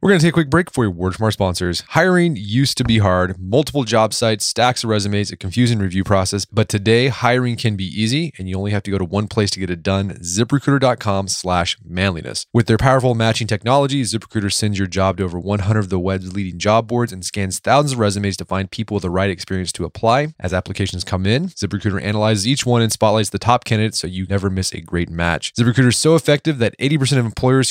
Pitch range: 95-120 Hz